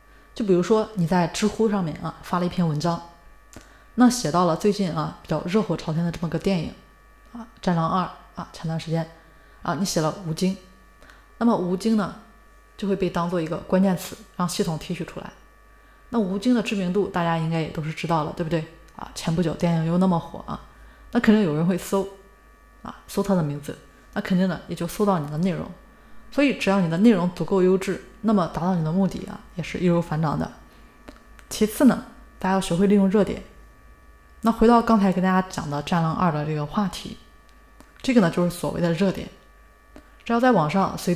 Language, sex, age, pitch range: Chinese, female, 20-39, 165-200 Hz